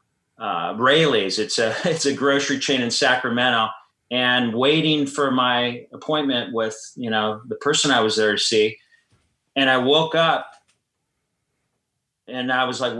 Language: English